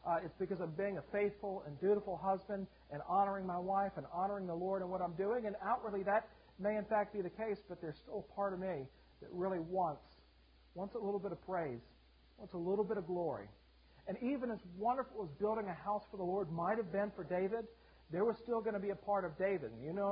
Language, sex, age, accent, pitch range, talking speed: English, male, 40-59, American, 160-200 Hz, 245 wpm